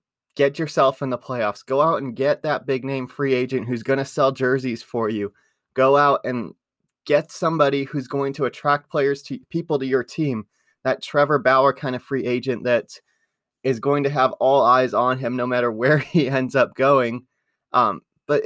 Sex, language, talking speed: male, English, 195 wpm